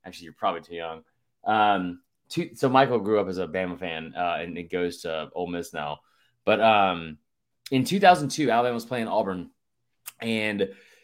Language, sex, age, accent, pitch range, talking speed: English, male, 20-39, American, 95-120 Hz, 175 wpm